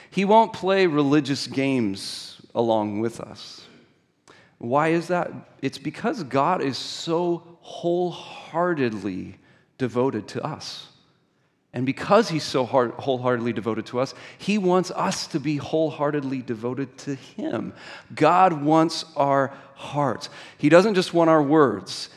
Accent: American